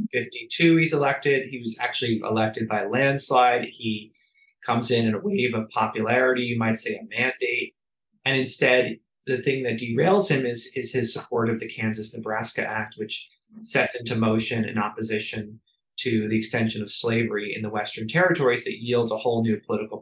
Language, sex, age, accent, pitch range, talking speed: English, male, 30-49, American, 110-140 Hz, 175 wpm